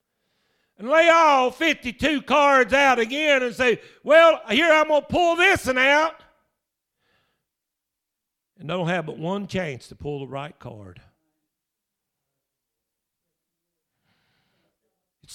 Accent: American